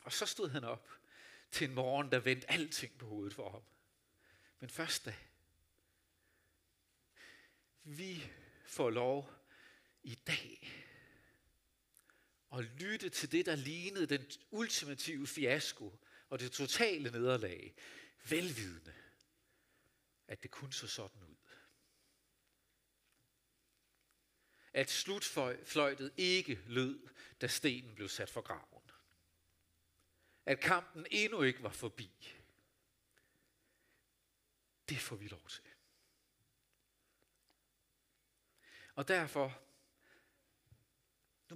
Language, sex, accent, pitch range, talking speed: Danish, male, native, 110-150 Hz, 95 wpm